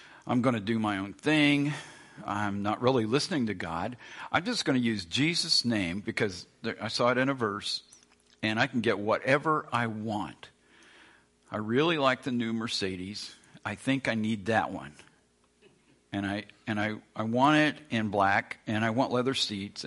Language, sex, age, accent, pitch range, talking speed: English, male, 50-69, American, 105-135 Hz, 180 wpm